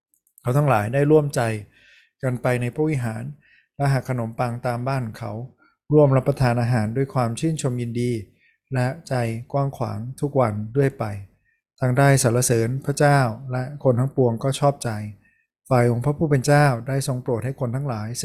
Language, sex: Thai, male